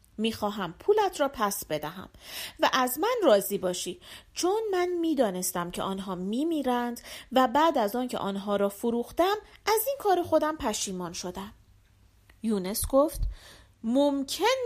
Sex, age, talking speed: female, 40-59, 135 wpm